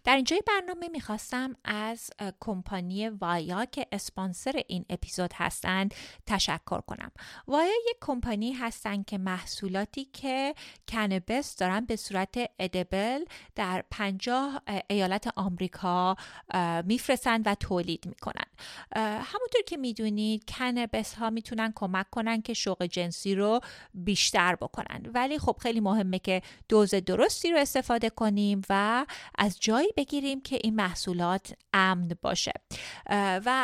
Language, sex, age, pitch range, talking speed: Persian, female, 30-49, 195-265 Hz, 125 wpm